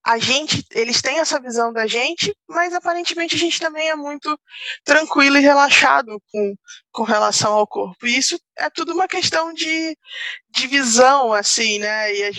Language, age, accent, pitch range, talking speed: Portuguese, 20-39, Brazilian, 205-275 Hz, 175 wpm